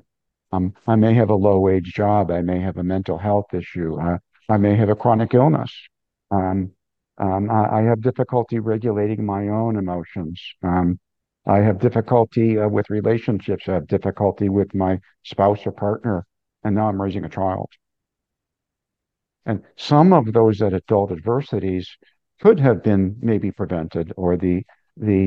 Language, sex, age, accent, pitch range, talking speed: English, male, 50-69, American, 95-110 Hz, 160 wpm